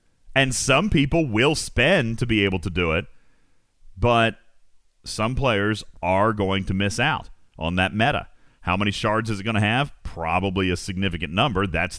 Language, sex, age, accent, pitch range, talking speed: English, male, 40-59, American, 105-165 Hz, 175 wpm